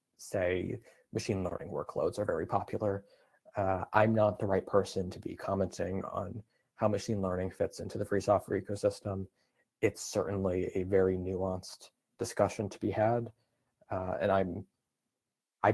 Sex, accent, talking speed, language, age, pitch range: male, American, 150 wpm, English, 20-39, 95-110 Hz